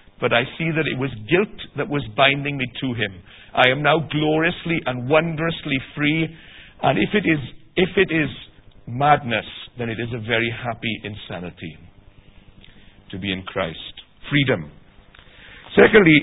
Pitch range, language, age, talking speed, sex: 110-150 Hz, English, 50-69, 150 wpm, male